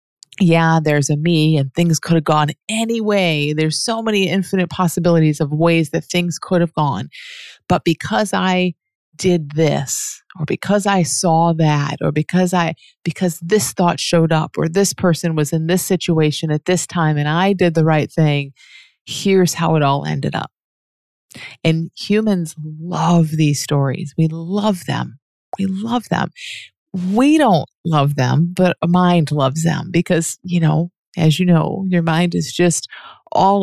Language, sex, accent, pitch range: English, female, American, 150-180 Hz